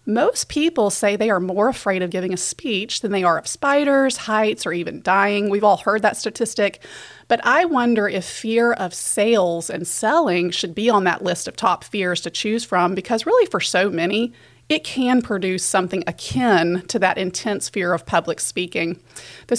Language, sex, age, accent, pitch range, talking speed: English, female, 30-49, American, 185-240 Hz, 195 wpm